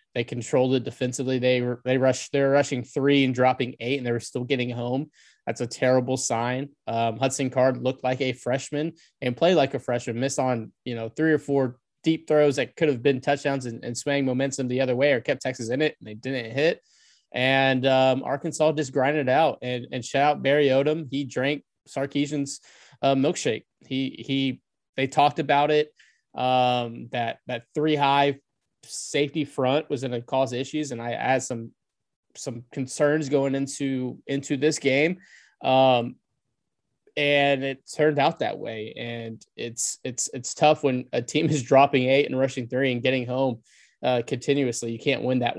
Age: 20-39